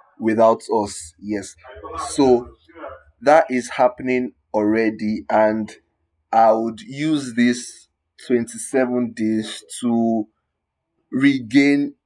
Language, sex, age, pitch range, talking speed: English, male, 20-39, 100-125 Hz, 85 wpm